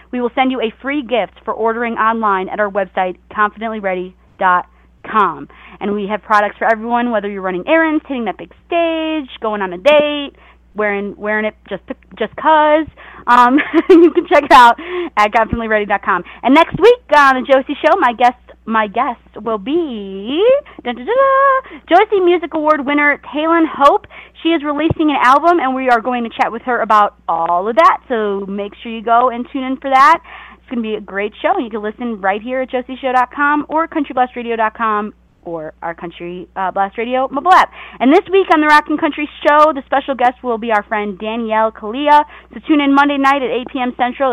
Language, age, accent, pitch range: English, 30-49, American, 215-295 Hz